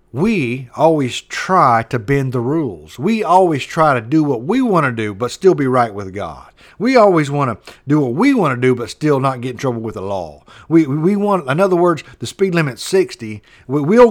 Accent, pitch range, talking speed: American, 105-160 Hz, 225 wpm